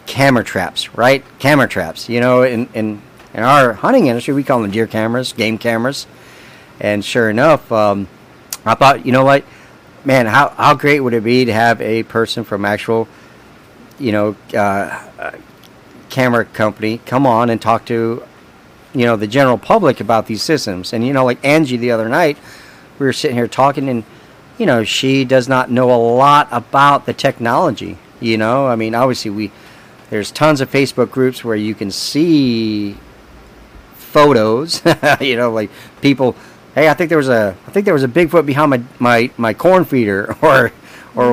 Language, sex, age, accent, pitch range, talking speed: English, male, 40-59, American, 110-130 Hz, 180 wpm